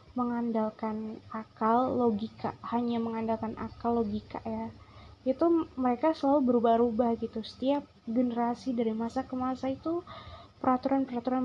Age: 20-39